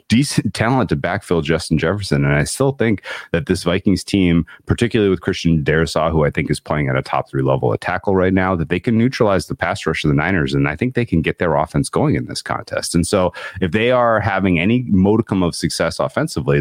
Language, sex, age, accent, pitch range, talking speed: English, male, 30-49, American, 80-110 Hz, 235 wpm